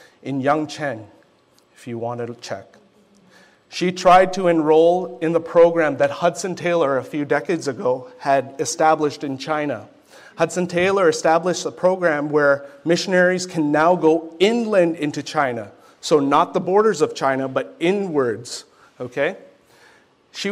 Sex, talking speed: male, 140 wpm